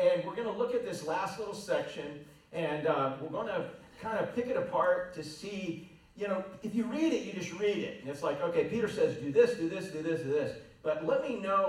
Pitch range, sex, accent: 155-225 Hz, male, American